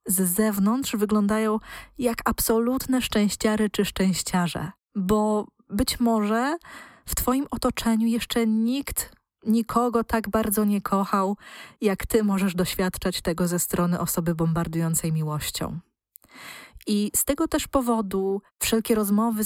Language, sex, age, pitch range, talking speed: Polish, female, 20-39, 185-230 Hz, 115 wpm